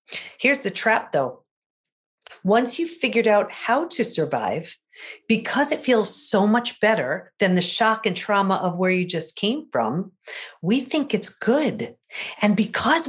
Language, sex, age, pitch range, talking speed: English, female, 50-69, 185-245 Hz, 155 wpm